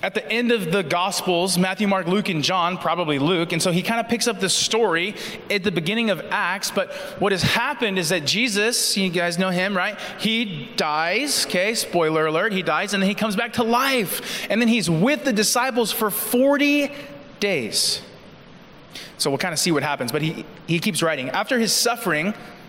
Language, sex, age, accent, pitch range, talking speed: English, male, 20-39, American, 185-235 Hz, 205 wpm